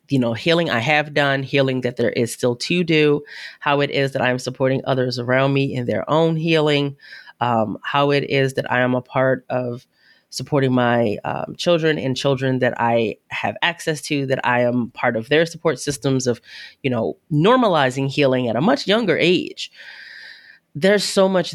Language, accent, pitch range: English, American, 125-140 Hz